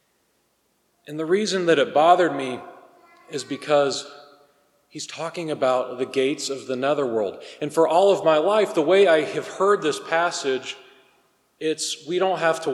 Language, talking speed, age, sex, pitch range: English, 165 wpm, 40-59, male, 140-180 Hz